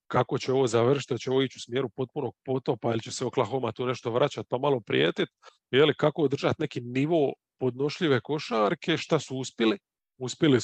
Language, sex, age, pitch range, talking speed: English, male, 40-59, 120-145 Hz, 175 wpm